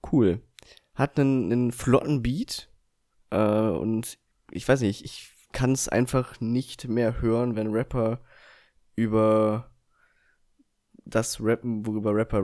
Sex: male